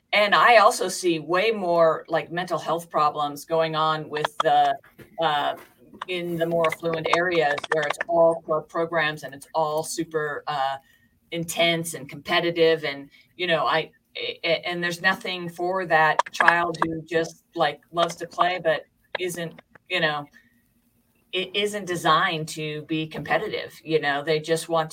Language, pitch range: English, 150-170 Hz